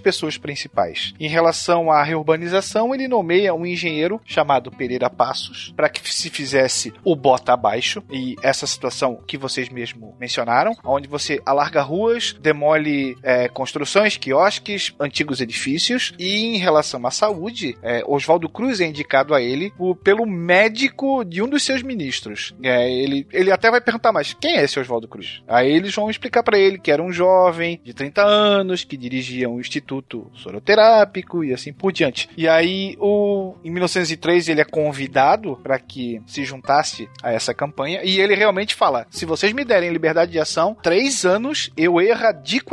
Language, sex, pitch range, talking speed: Portuguese, male, 140-205 Hz, 170 wpm